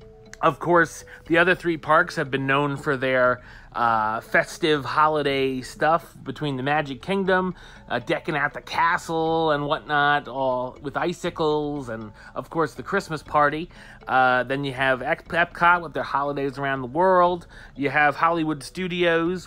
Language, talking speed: English, 155 wpm